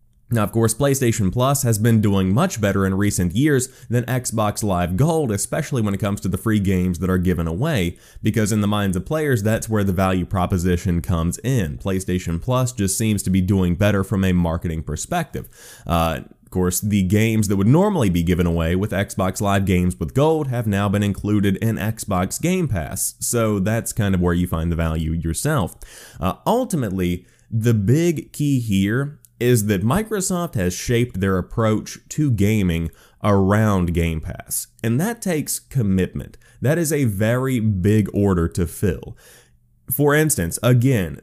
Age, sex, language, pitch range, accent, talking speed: 20-39, male, English, 95-125 Hz, American, 180 wpm